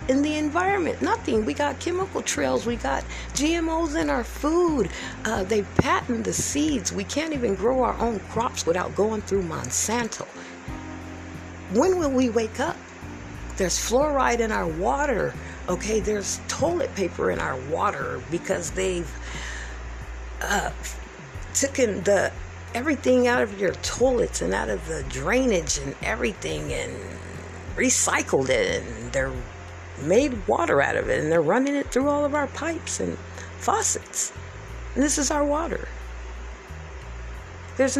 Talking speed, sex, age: 140 wpm, female, 50-69